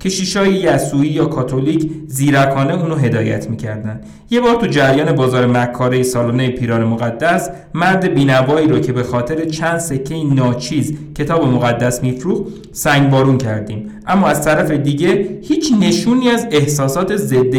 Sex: male